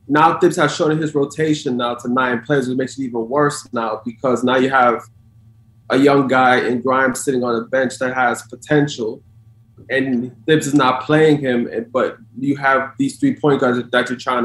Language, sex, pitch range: English, male, 120-145 Hz